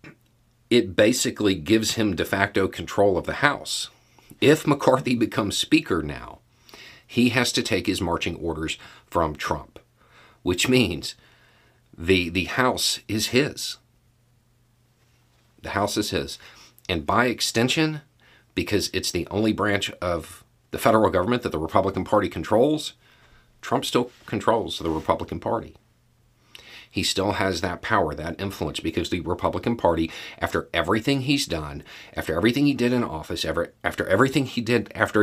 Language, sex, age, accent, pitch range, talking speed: English, male, 40-59, American, 95-120 Hz, 145 wpm